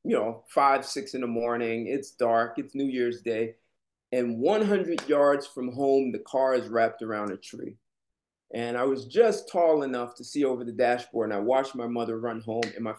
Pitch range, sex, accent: 115-140 Hz, male, American